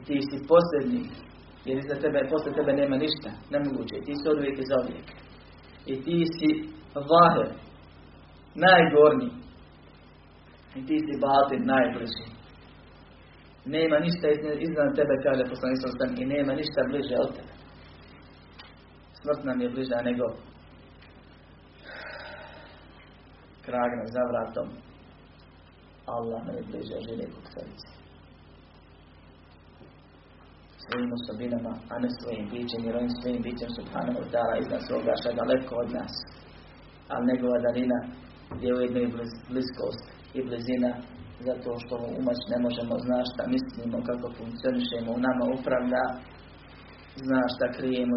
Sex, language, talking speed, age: male, Croatian, 120 wpm, 40-59